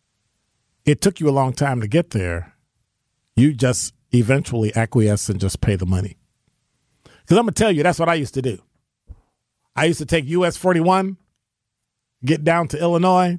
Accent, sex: American, male